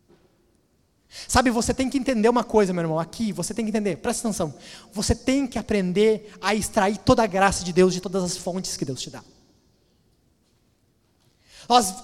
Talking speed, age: 180 wpm, 20-39